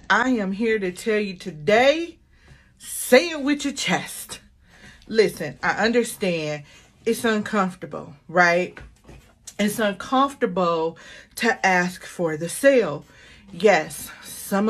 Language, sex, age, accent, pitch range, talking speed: English, female, 40-59, American, 170-240 Hz, 110 wpm